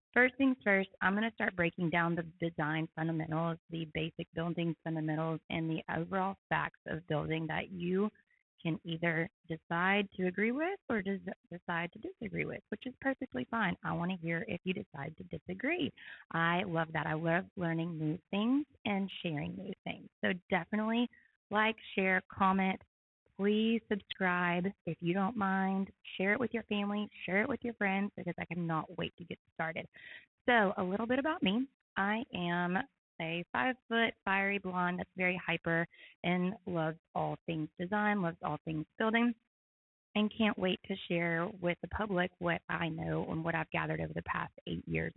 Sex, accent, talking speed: female, American, 175 wpm